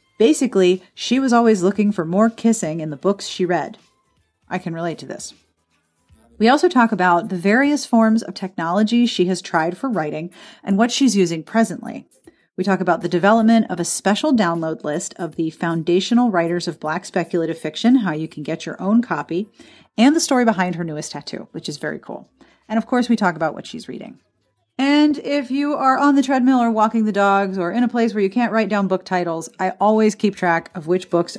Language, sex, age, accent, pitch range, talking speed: English, female, 40-59, American, 170-245 Hz, 210 wpm